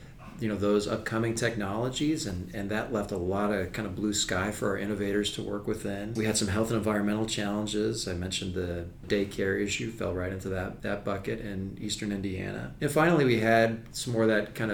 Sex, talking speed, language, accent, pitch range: male, 210 wpm, English, American, 95-115 Hz